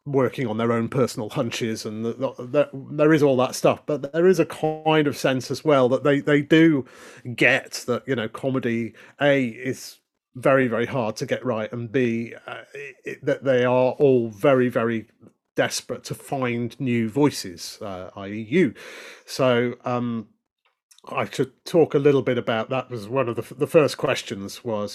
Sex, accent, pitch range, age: male, British, 115-140 Hz, 40-59